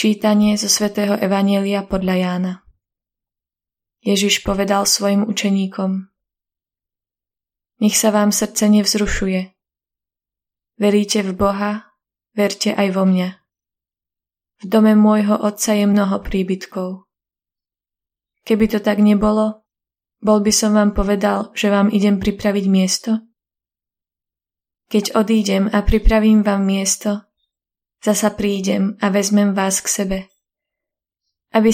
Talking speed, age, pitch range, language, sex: 110 wpm, 20-39, 185-210 Hz, Slovak, female